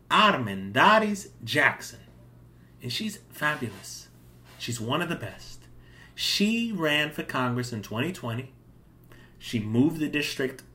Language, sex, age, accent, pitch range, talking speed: English, male, 30-49, American, 120-195 Hz, 110 wpm